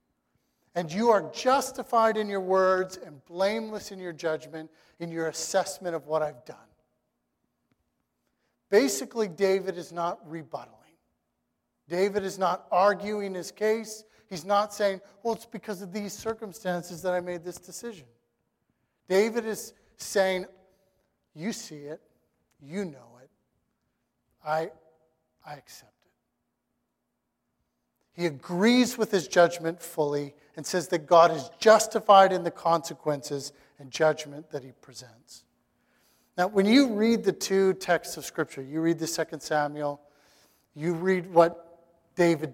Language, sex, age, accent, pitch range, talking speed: English, male, 40-59, American, 155-195 Hz, 135 wpm